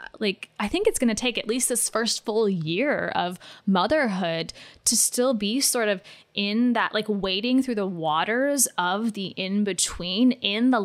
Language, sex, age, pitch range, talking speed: English, female, 10-29, 205-265 Hz, 185 wpm